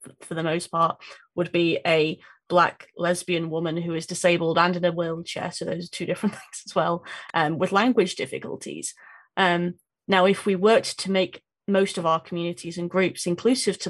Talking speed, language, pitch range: 190 wpm, English, 170-190 Hz